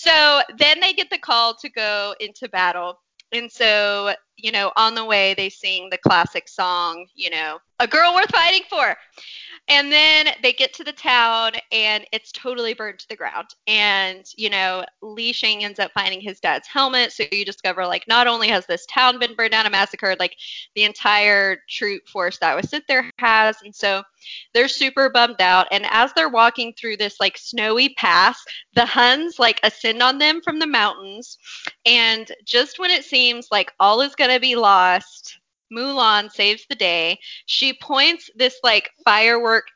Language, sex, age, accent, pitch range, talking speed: English, female, 20-39, American, 200-255 Hz, 185 wpm